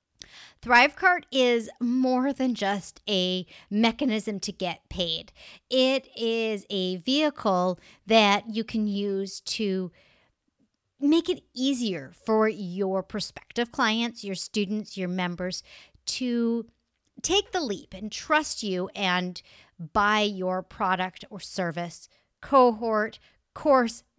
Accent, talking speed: American, 110 wpm